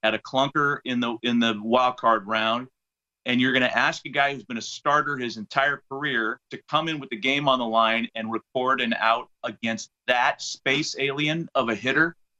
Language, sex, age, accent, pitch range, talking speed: English, male, 40-59, American, 110-145 Hz, 215 wpm